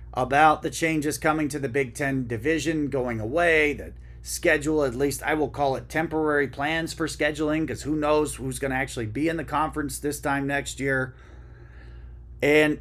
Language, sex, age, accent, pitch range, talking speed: English, male, 40-59, American, 110-150 Hz, 185 wpm